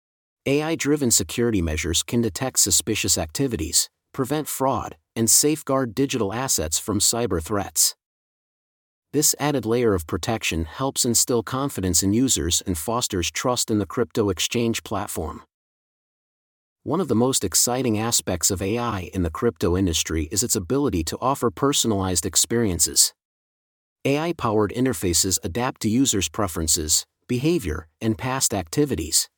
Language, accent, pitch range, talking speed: English, American, 95-130 Hz, 130 wpm